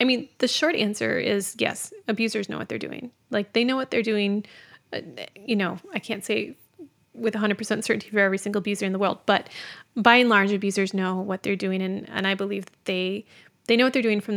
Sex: female